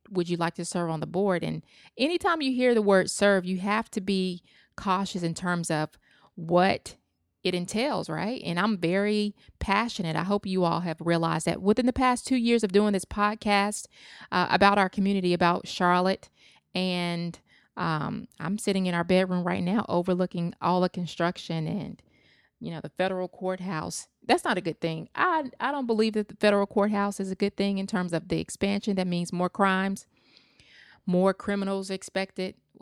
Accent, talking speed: American, 185 wpm